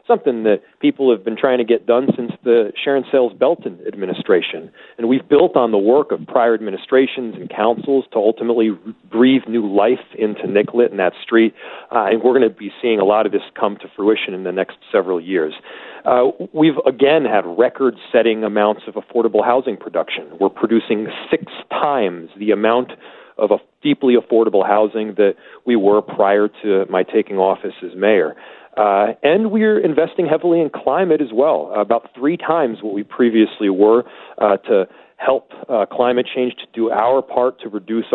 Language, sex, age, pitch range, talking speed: English, male, 40-59, 105-130 Hz, 180 wpm